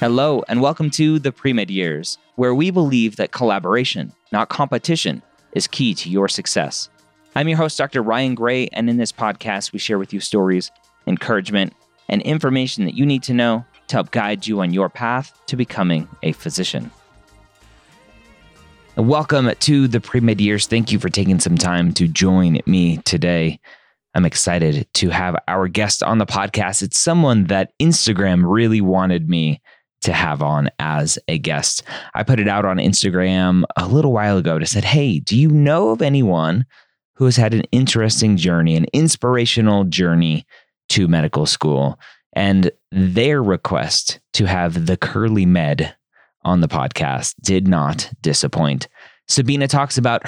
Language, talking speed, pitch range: English, 165 wpm, 90-125 Hz